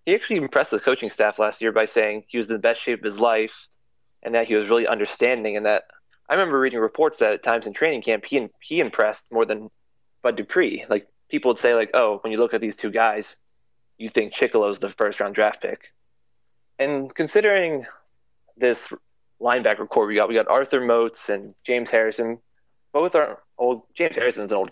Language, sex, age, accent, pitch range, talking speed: English, male, 20-39, American, 110-140 Hz, 210 wpm